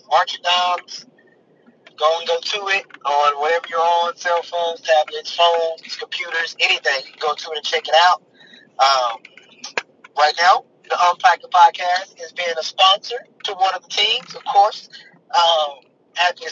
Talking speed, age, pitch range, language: 165 wpm, 30-49, 160-195 Hz, English